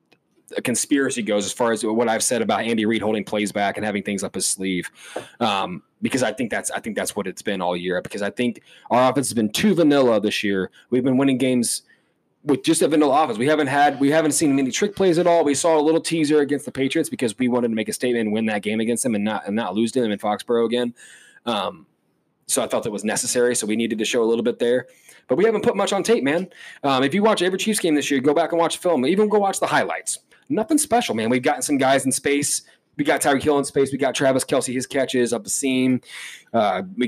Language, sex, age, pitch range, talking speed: English, male, 20-39, 120-155 Hz, 270 wpm